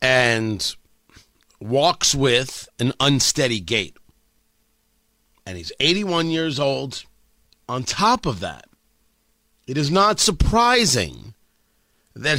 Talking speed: 95 wpm